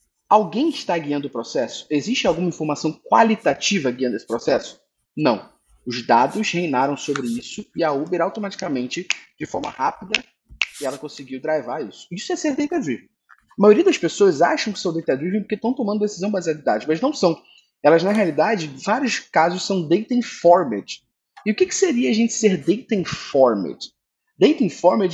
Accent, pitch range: Brazilian, 145-215 Hz